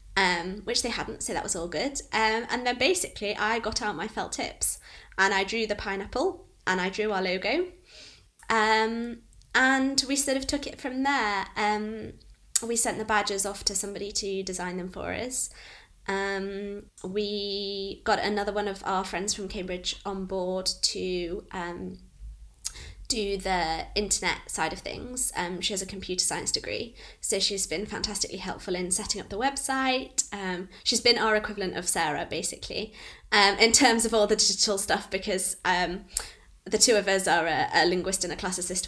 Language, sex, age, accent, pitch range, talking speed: English, female, 20-39, British, 190-225 Hz, 180 wpm